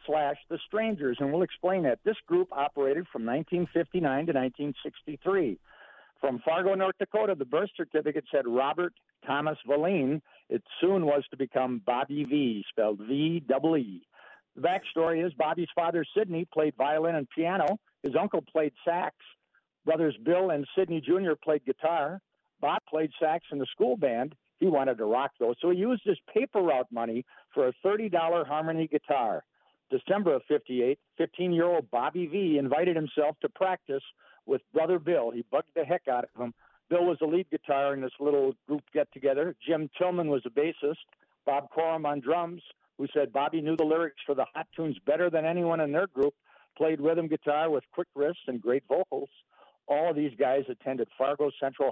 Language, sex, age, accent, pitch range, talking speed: English, male, 60-79, American, 140-175 Hz, 175 wpm